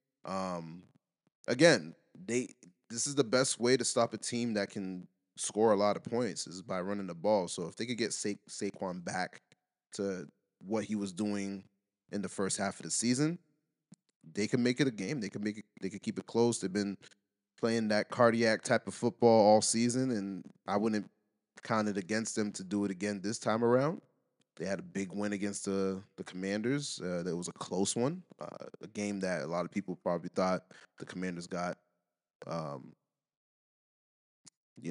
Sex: male